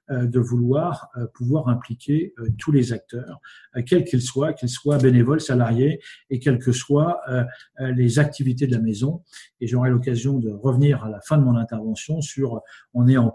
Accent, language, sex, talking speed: French, French, male, 170 wpm